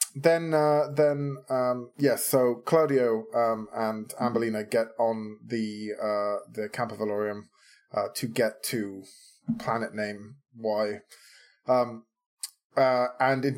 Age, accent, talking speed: 20-39, British, 130 wpm